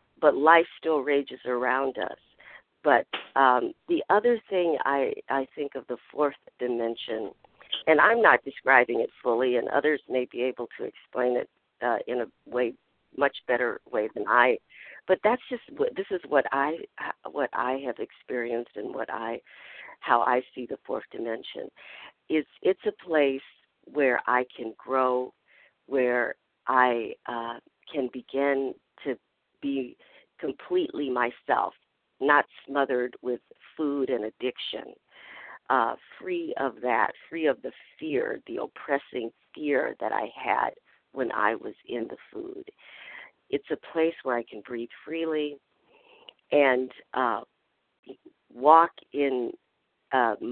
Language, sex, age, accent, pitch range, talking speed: English, female, 50-69, American, 125-170 Hz, 140 wpm